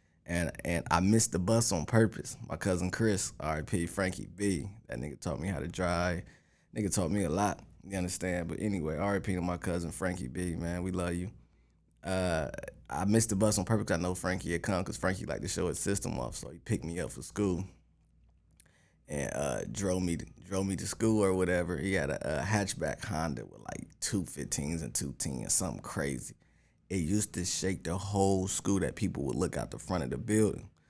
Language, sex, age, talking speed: English, male, 20-39, 215 wpm